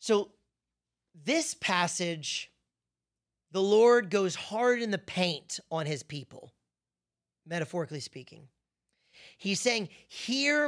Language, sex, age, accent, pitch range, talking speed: English, male, 30-49, American, 155-240 Hz, 100 wpm